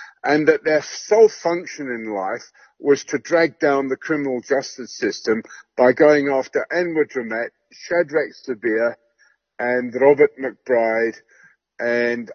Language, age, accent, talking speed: English, 60-79, British, 125 wpm